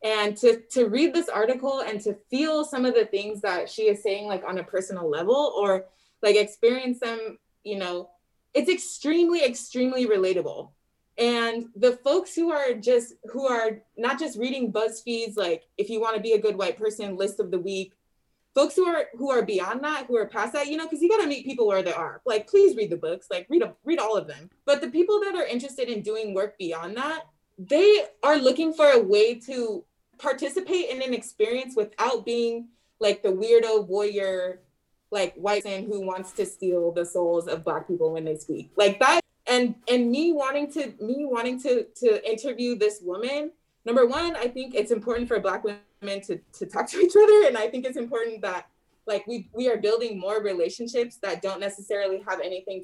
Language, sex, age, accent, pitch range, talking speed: English, female, 20-39, American, 205-295 Hz, 205 wpm